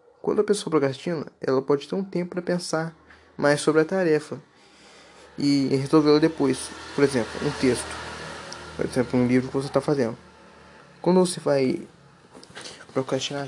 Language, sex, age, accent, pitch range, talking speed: Portuguese, male, 20-39, Brazilian, 140-180 Hz, 150 wpm